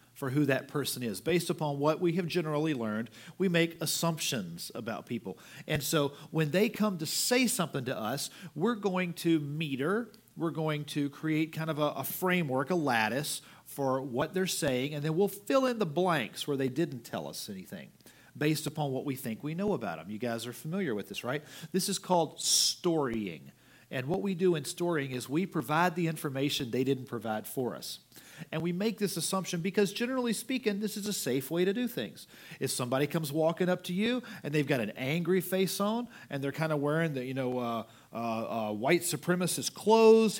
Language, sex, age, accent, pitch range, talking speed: English, male, 40-59, American, 140-190 Hz, 205 wpm